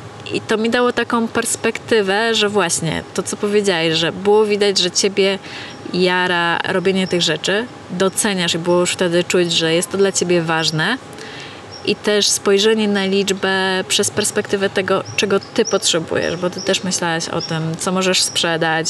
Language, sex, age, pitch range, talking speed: Polish, female, 30-49, 175-205 Hz, 165 wpm